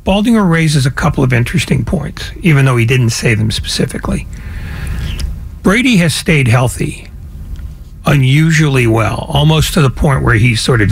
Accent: American